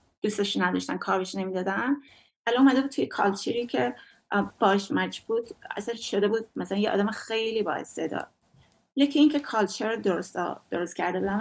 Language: Persian